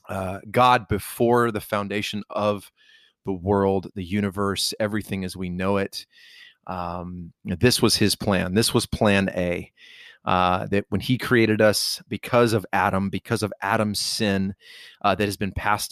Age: 30-49